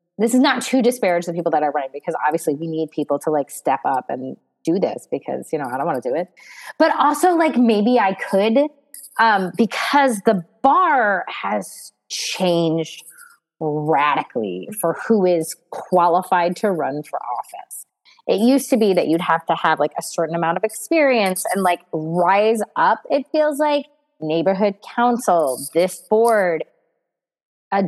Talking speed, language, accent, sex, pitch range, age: 170 wpm, English, American, female, 180-255 Hz, 30-49